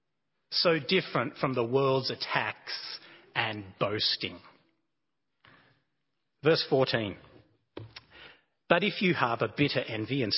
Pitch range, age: 135-190 Hz, 40-59